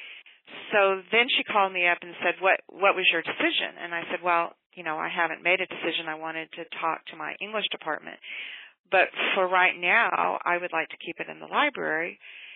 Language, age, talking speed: English, 40-59, 215 wpm